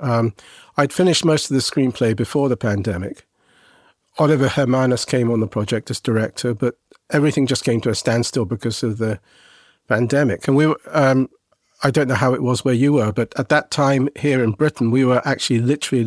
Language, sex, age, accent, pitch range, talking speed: English, male, 50-69, British, 120-145 Hz, 195 wpm